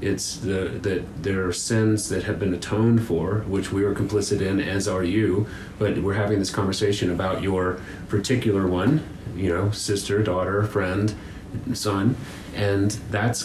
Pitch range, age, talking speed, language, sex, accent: 95-115 Hz, 30-49, 160 wpm, English, male, American